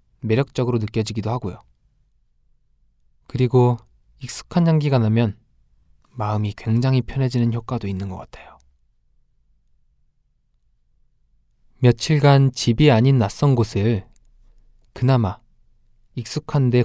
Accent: native